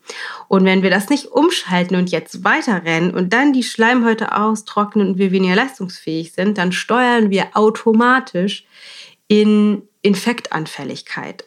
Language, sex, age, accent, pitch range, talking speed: German, female, 30-49, German, 180-220 Hz, 130 wpm